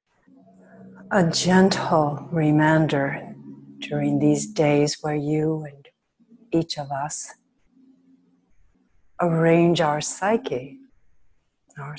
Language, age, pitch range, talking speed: English, 60-79, 145-180 Hz, 80 wpm